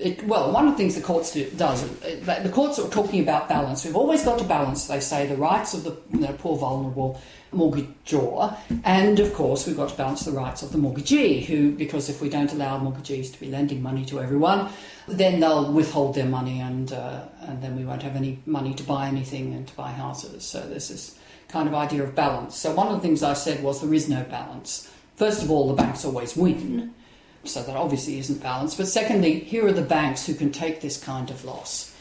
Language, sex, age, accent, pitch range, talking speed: English, female, 50-69, Australian, 140-170 Hz, 230 wpm